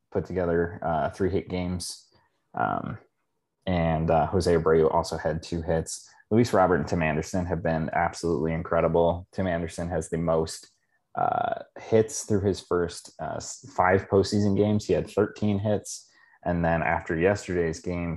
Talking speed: 155 wpm